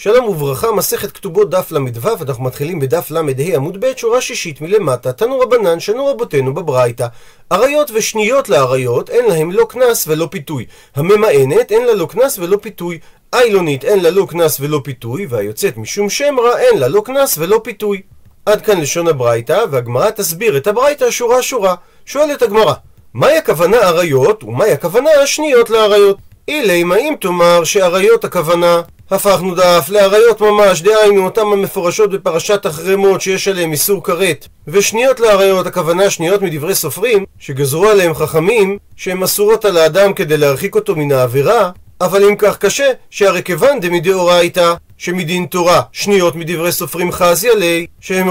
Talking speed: 155 wpm